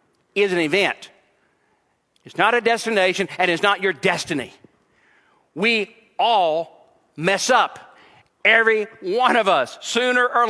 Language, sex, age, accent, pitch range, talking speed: English, male, 50-69, American, 200-265 Hz, 125 wpm